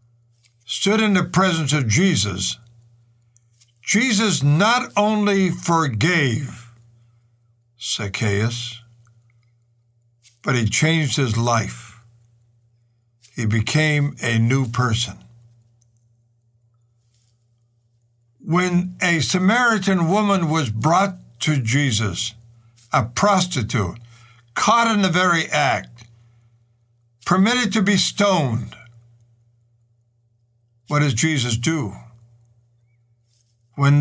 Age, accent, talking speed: 60-79, American, 80 wpm